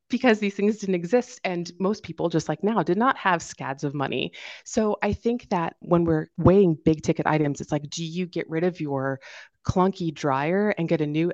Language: English